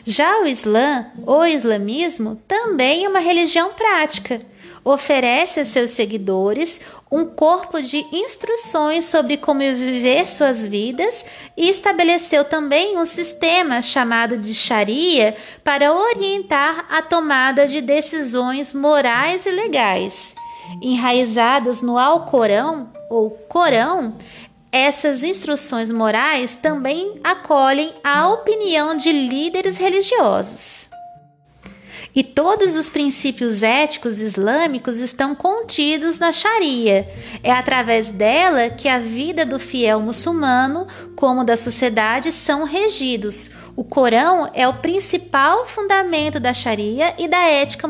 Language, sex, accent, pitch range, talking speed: Portuguese, female, Brazilian, 245-340 Hz, 110 wpm